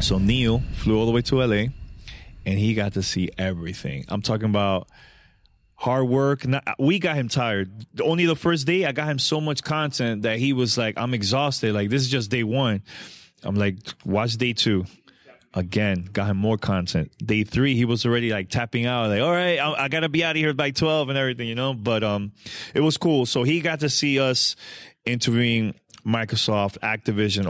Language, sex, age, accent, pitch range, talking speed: English, male, 20-39, American, 100-125 Hz, 205 wpm